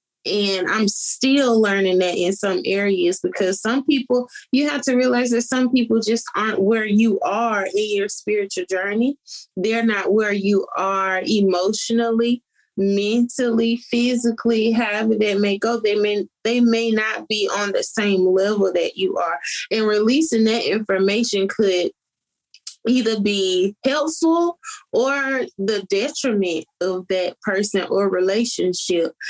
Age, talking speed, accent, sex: 20-39, 135 wpm, American, female